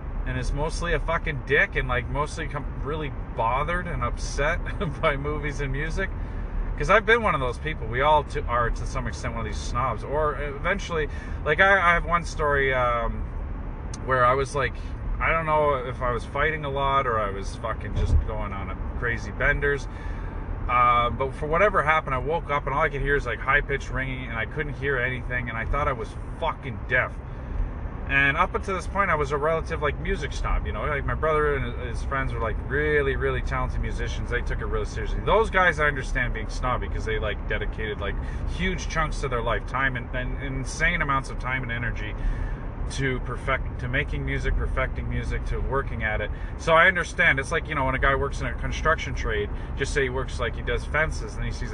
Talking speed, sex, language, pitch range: 220 wpm, male, English, 95-140 Hz